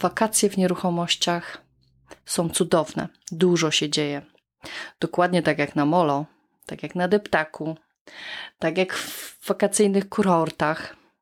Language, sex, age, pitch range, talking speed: Polish, female, 30-49, 160-200 Hz, 120 wpm